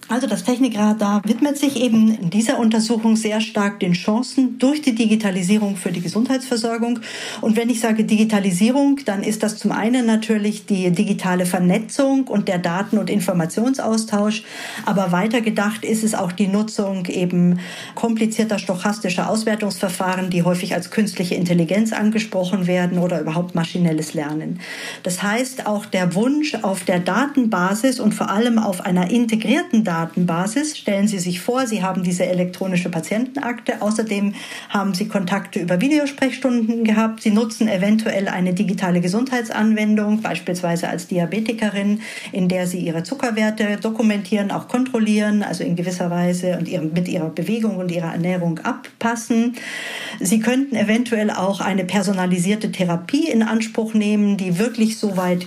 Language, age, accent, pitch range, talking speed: German, 50-69, German, 185-230 Hz, 145 wpm